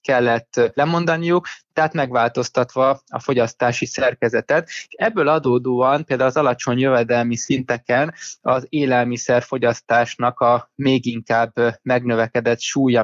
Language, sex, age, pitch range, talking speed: Hungarian, male, 20-39, 120-135 Hz, 95 wpm